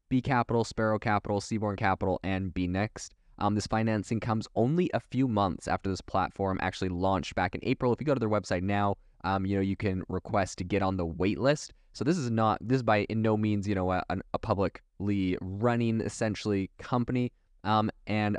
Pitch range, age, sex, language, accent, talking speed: 95-110 Hz, 20-39, male, English, American, 205 wpm